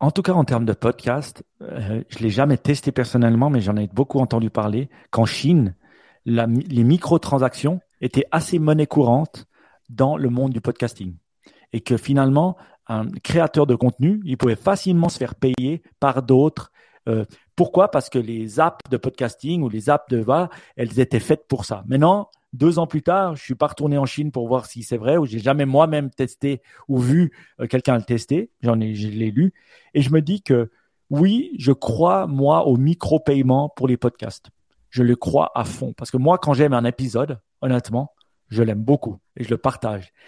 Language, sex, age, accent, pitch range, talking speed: French, male, 40-59, French, 120-155 Hz, 200 wpm